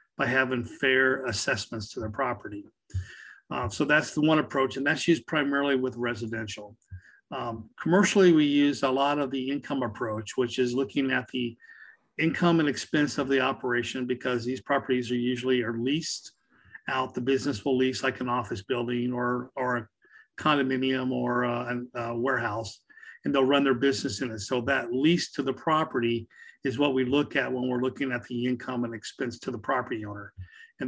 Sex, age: male, 50-69